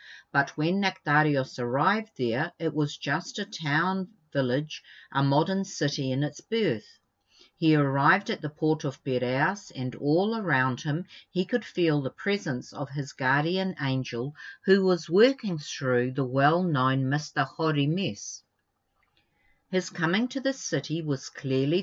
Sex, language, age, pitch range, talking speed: female, English, 50-69, 135-180 Hz, 145 wpm